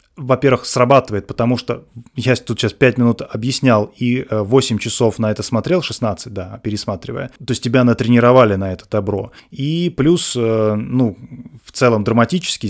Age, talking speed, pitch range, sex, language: 20-39, 150 wpm, 110-135 Hz, male, Russian